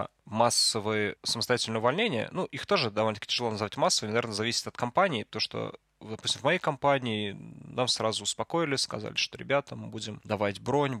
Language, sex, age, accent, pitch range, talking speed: Russian, male, 20-39, native, 105-130 Hz, 165 wpm